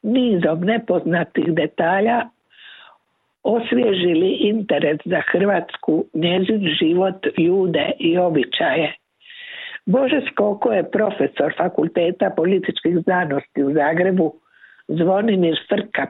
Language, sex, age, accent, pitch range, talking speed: Croatian, female, 60-79, native, 170-225 Hz, 85 wpm